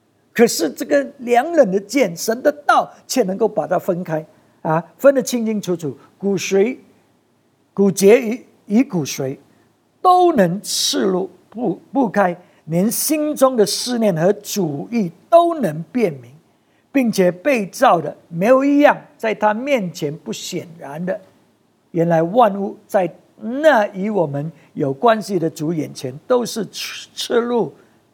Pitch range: 150-220 Hz